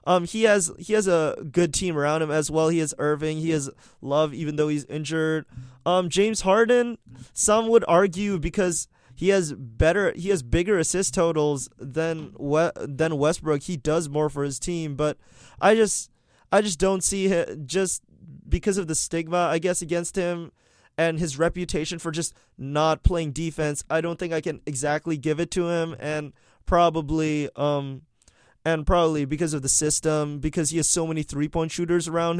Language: English